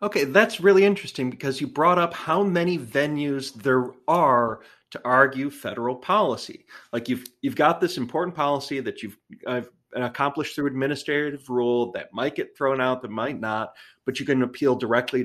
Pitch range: 125-160 Hz